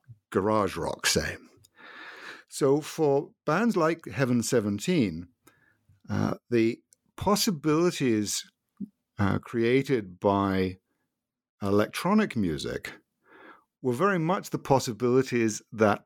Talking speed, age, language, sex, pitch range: 85 wpm, 50-69, English, male, 95-125 Hz